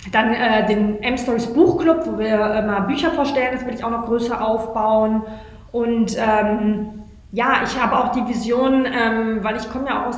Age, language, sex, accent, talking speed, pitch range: 20-39, German, female, German, 195 wpm, 225-255 Hz